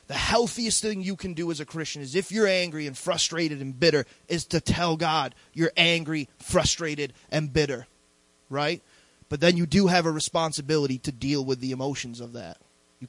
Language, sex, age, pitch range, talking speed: English, male, 20-39, 135-175 Hz, 195 wpm